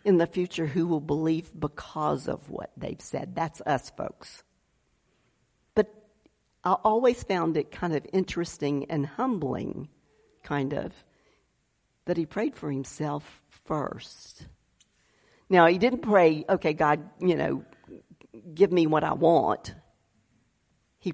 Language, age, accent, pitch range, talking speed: English, 50-69, American, 150-190 Hz, 130 wpm